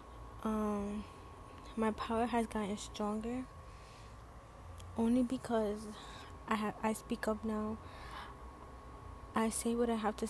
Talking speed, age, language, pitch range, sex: 110 wpm, 10-29, English, 205-220 Hz, female